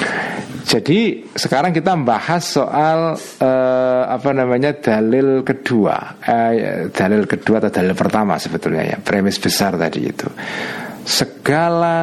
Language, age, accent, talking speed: Indonesian, 50-69, native, 115 wpm